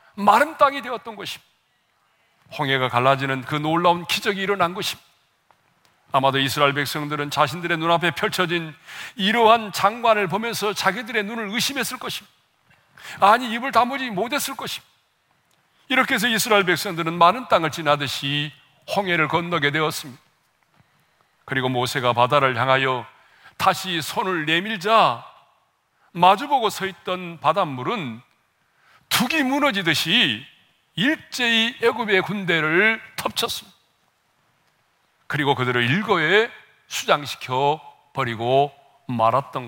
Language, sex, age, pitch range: Korean, male, 40-59, 145-220 Hz